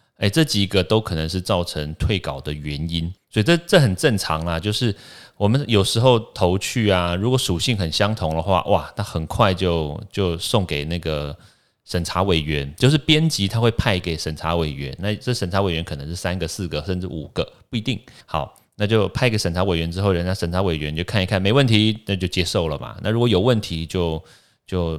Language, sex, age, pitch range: Chinese, male, 30-49, 85-110 Hz